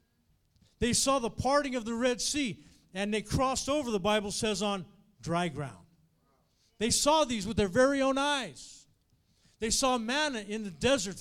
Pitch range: 200-270 Hz